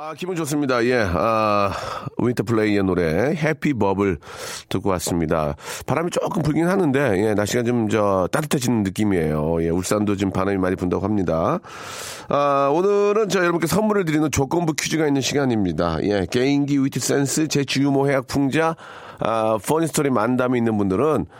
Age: 40-59